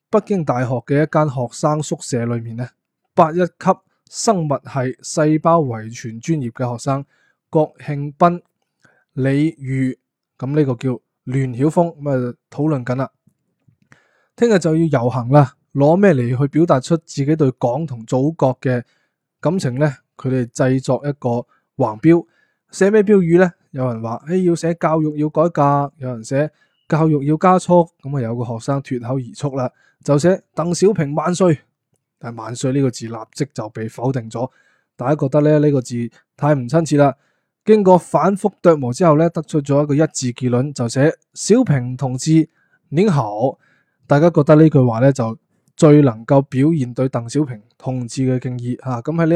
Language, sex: Chinese, male